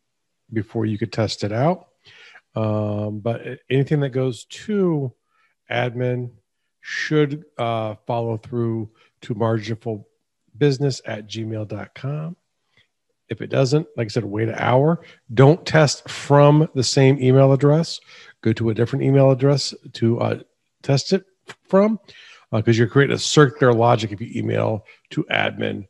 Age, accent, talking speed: 50-69, American, 140 wpm